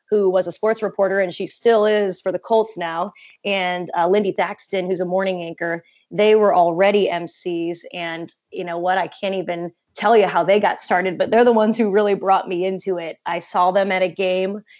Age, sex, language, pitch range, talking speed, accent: 20-39, female, English, 180-210 Hz, 220 wpm, American